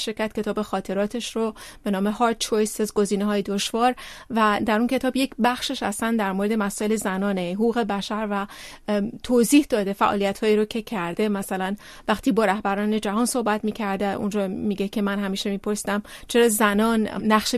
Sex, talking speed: female, 165 wpm